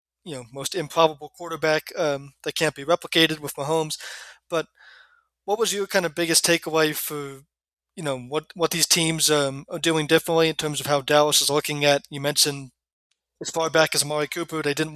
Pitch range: 145-160 Hz